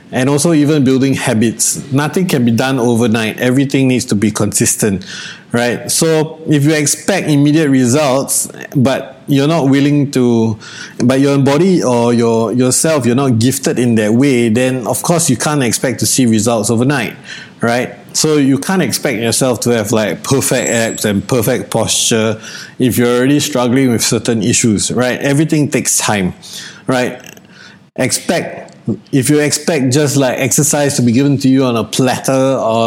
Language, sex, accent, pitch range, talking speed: English, male, Malaysian, 120-145 Hz, 165 wpm